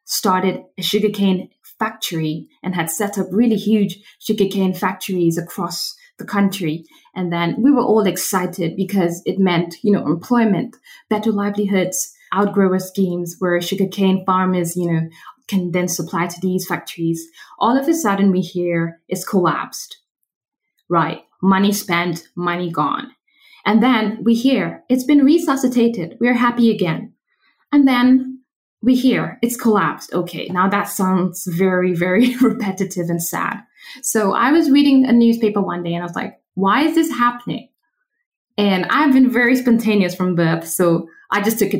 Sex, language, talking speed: female, English, 155 wpm